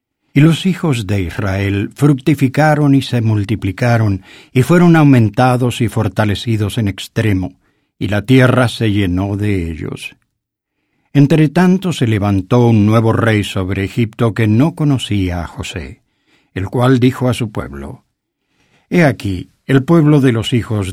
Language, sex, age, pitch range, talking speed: English, male, 60-79, 105-135 Hz, 140 wpm